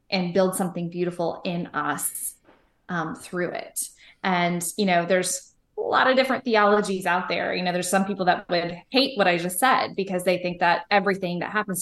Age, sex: 20-39, female